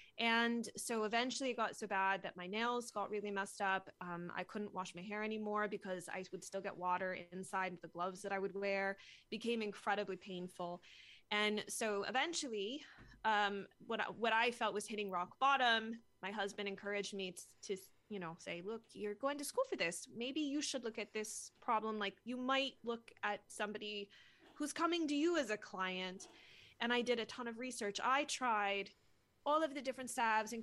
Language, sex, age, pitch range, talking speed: English, female, 20-39, 195-235 Hz, 200 wpm